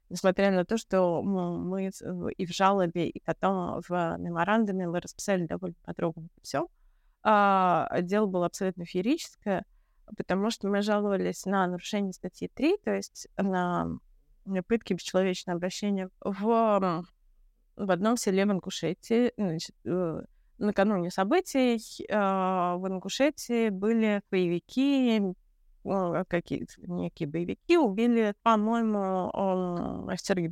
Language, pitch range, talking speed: Russian, 180-225 Hz, 100 wpm